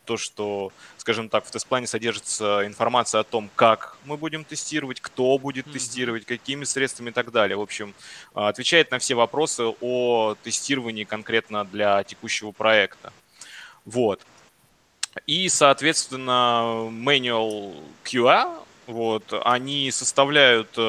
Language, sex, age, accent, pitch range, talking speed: Russian, male, 20-39, native, 105-130 Hz, 120 wpm